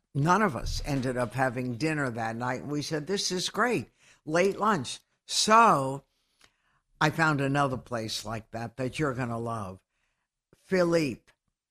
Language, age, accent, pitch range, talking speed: English, 60-79, American, 130-160 Hz, 145 wpm